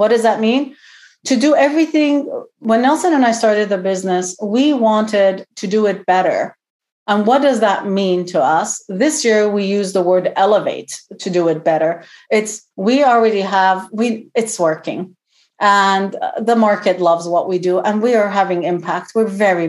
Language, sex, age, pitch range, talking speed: English, female, 40-59, 190-235 Hz, 180 wpm